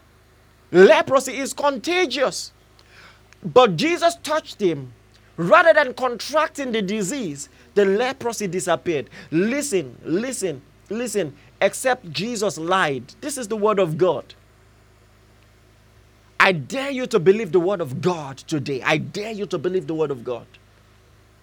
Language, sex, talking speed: English, male, 130 wpm